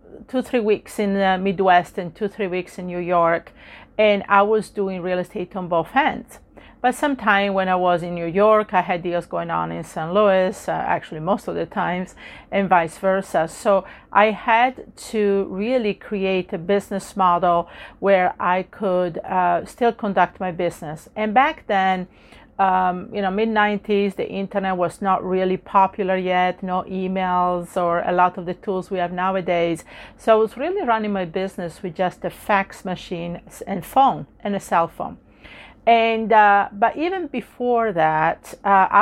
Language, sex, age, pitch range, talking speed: English, female, 40-59, 180-210 Hz, 175 wpm